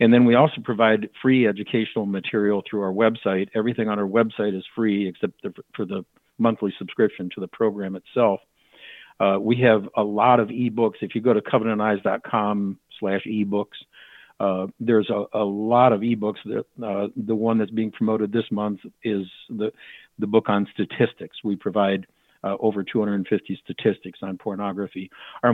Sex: male